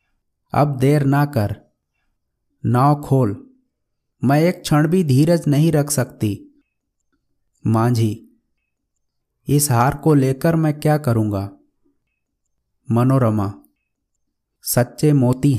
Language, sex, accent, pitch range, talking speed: Hindi, male, native, 120-155 Hz, 95 wpm